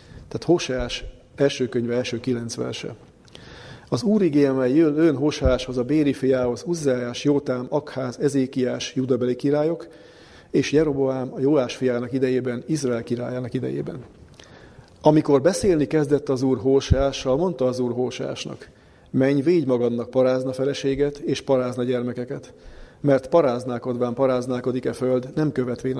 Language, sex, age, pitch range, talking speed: German, male, 40-59, 125-145 Hz, 125 wpm